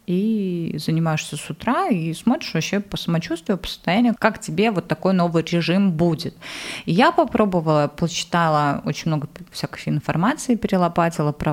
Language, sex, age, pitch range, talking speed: Russian, female, 30-49, 170-220 Hz, 140 wpm